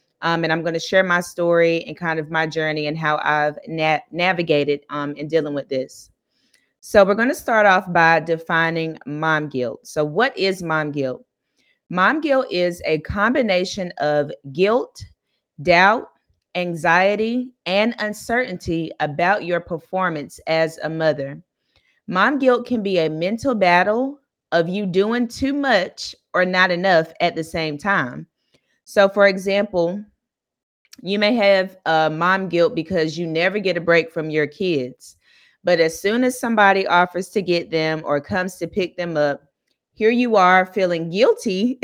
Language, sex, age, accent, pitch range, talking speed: English, female, 30-49, American, 155-195 Hz, 160 wpm